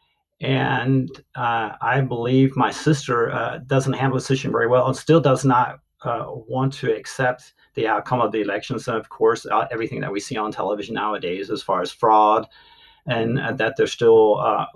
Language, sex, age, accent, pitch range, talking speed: English, male, 40-59, American, 115-140 Hz, 190 wpm